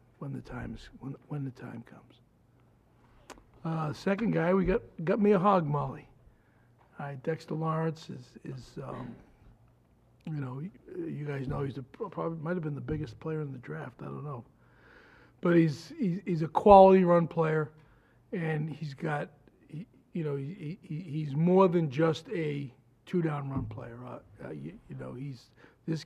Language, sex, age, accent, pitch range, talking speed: English, male, 60-79, American, 130-165 Hz, 165 wpm